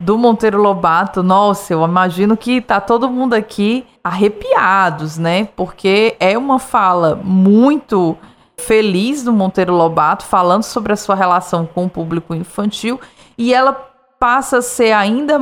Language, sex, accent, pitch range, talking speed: Portuguese, female, Brazilian, 175-225 Hz, 145 wpm